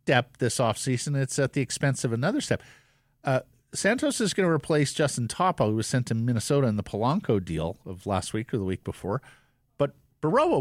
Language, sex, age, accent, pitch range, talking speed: English, male, 50-69, American, 110-145 Hz, 205 wpm